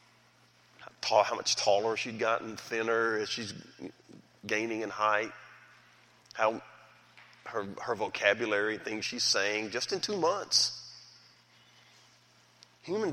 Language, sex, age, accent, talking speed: English, male, 40-59, American, 105 wpm